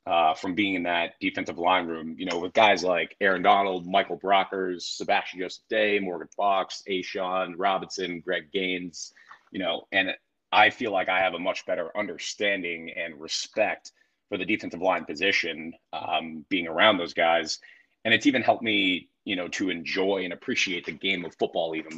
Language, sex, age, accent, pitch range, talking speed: English, male, 30-49, American, 90-100 Hz, 180 wpm